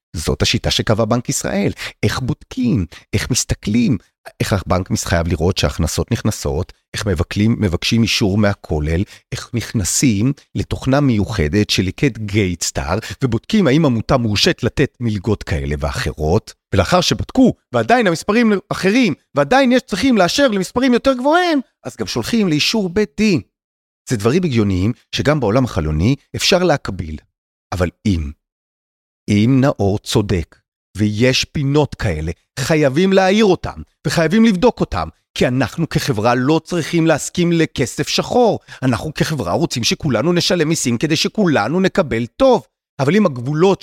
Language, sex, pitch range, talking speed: Hebrew, male, 105-175 Hz, 130 wpm